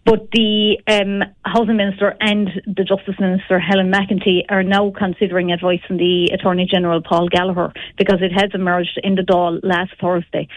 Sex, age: female, 30-49